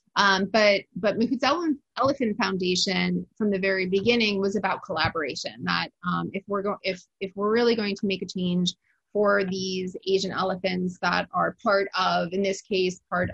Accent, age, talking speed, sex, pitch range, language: American, 30-49, 180 wpm, female, 190-220 Hz, English